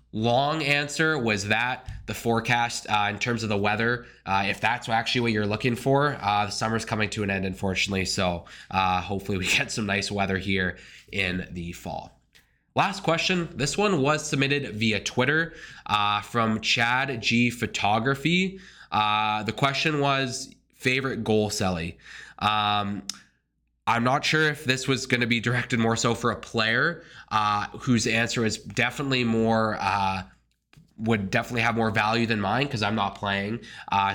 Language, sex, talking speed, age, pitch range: English, male, 165 wpm, 20-39, 105-125 Hz